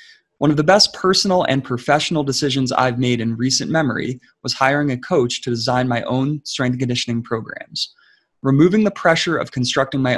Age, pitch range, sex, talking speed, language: 20-39, 120-150 Hz, male, 175 wpm, English